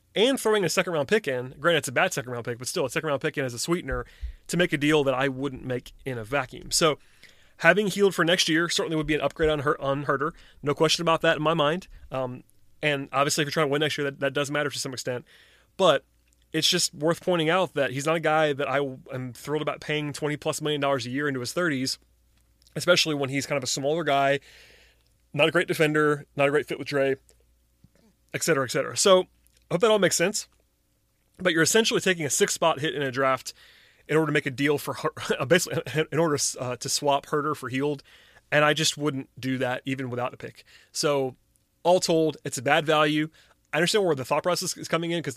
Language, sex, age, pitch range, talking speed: English, male, 30-49, 135-160 Hz, 240 wpm